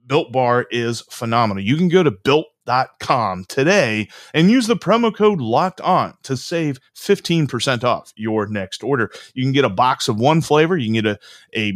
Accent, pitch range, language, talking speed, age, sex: American, 110-155 Hz, English, 190 wpm, 30-49, male